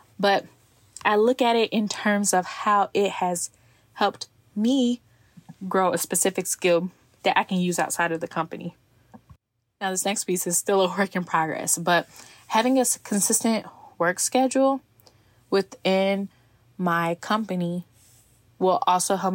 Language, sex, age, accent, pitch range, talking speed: English, female, 10-29, American, 160-195 Hz, 145 wpm